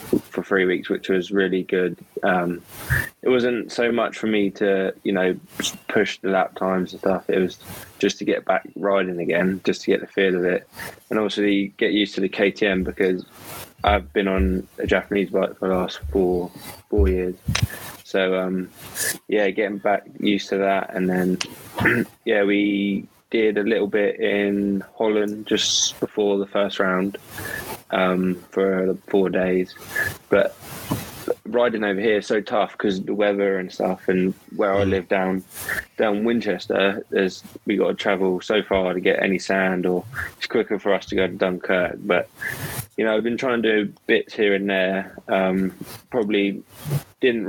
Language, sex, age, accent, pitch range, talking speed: English, male, 20-39, British, 95-105 Hz, 180 wpm